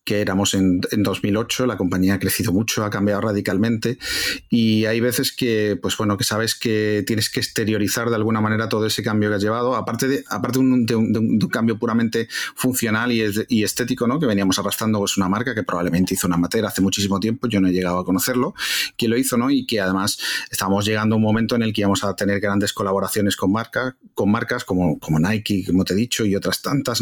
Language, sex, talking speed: Spanish, male, 230 wpm